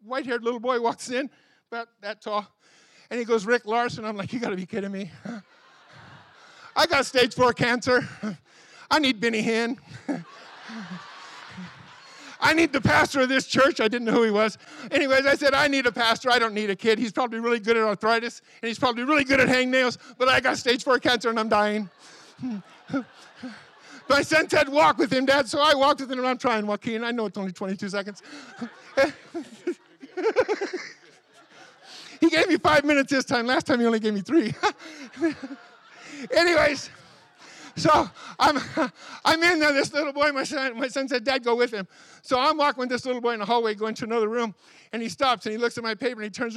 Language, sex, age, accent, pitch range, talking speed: English, male, 50-69, American, 225-275 Hz, 200 wpm